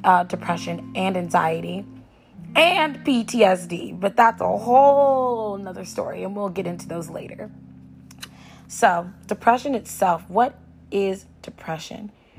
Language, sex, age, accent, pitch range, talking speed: English, female, 20-39, American, 180-220 Hz, 115 wpm